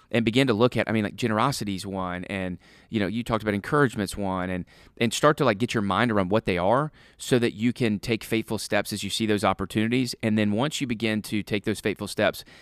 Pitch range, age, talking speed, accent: 95-115 Hz, 30-49, 245 wpm, American